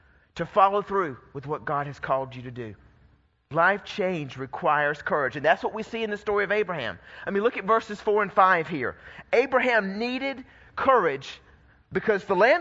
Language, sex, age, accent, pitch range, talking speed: English, male, 30-49, American, 180-225 Hz, 190 wpm